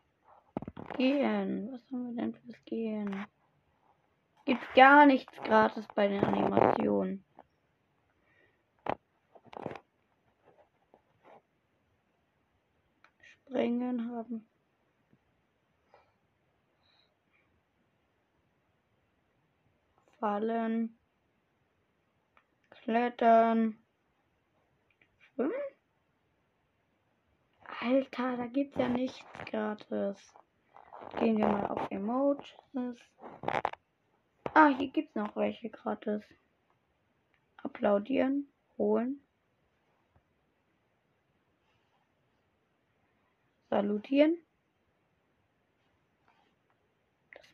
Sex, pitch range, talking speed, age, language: female, 215-270 Hz, 50 wpm, 20-39, German